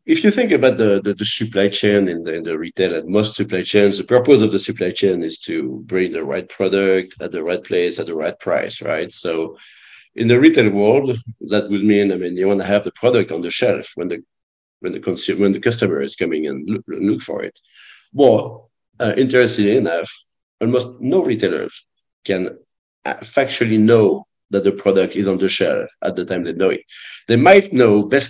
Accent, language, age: French, English, 50-69